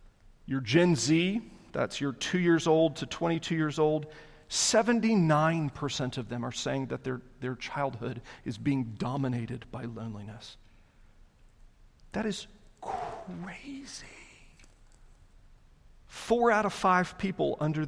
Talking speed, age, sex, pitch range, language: 115 wpm, 40-59, male, 135-180 Hz, English